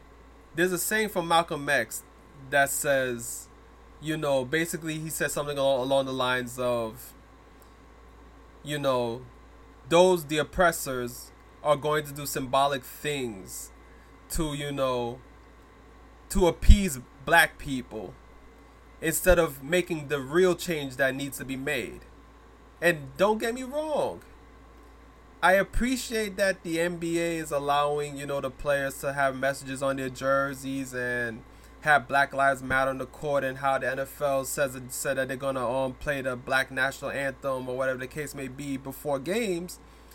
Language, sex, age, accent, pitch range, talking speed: English, male, 20-39, American, 130-155 Hz, 150 wpm